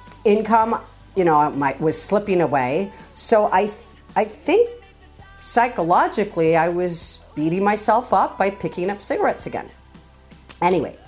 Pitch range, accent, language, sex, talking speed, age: 155-205 Hz, American, English, female, 130 wpm, 50-69